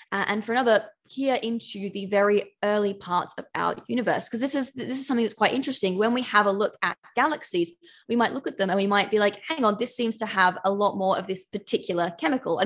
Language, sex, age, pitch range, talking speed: English, female, 20-39, 190-235 Hz, 250 wpm